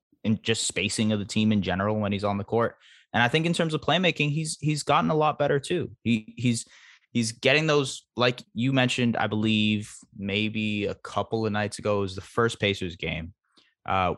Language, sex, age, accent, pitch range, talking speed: English, male, 20-39, American, 95-120 Hz, 205 wpm